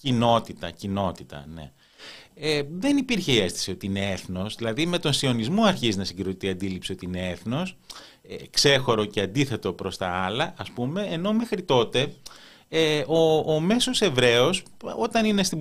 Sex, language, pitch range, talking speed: male, Greek, 100-160 Hz, 165 wpm